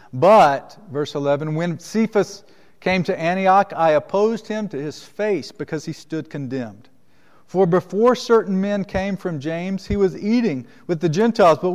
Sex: male